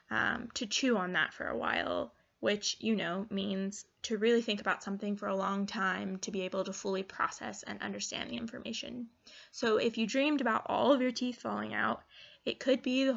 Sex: female